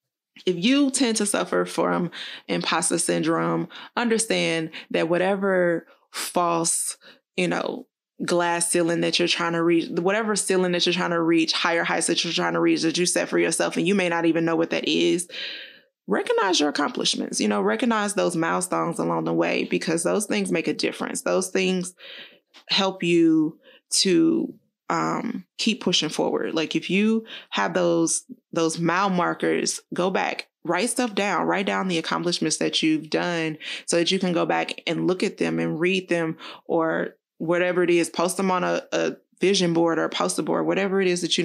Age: 20-39